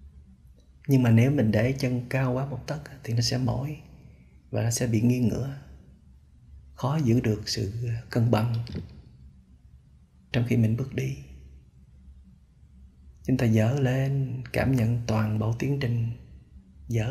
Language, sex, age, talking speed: Vietnamese, male, 20-39, 145 wpm